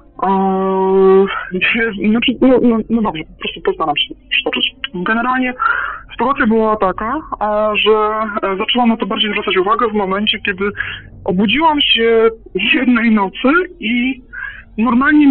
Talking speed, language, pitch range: 120 wpm, Polish, 200-265 Hz